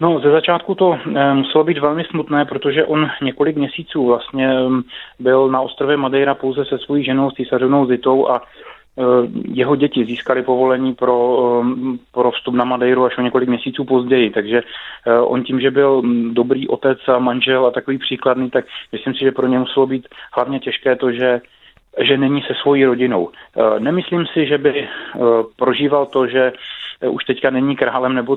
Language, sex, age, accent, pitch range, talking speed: Czech, male, 30-49, native, 120-135 Hz, 170 wpm